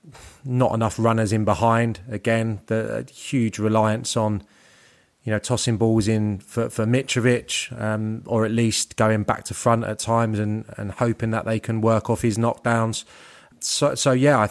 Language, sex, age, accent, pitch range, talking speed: English, male, 20-39, British, 110-120 Hz, 175 wpm